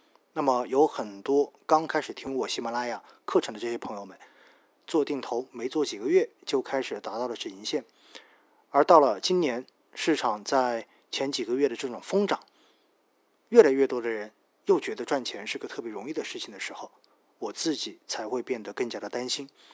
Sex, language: male, Chinese